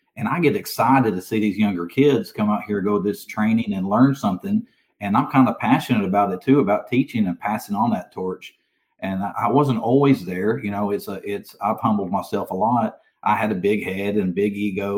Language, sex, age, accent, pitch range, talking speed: English, male, 40-59, American, 100-125 Hz, 230 wpm